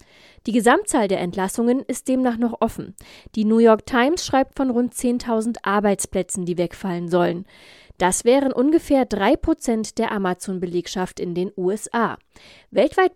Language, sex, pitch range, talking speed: German, female, 195-245 Hz, 135 wpm